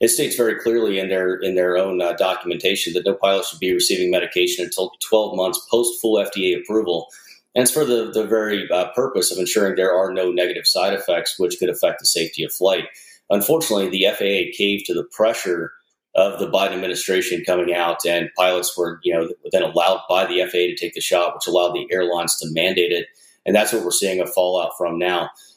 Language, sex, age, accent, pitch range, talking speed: English, male, 30-49, American, 90-115 Hz, 215 wpm